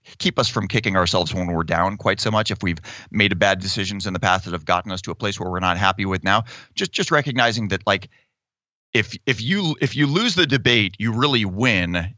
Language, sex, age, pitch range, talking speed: English, male, 30-49, 95-120 Hz, 240 wpm